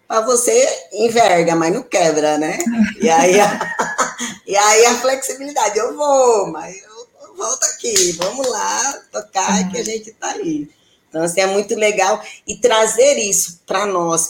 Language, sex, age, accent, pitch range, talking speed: Portuguese, female, 20-39, Brazilian, 170-245 Hz, 160 wpm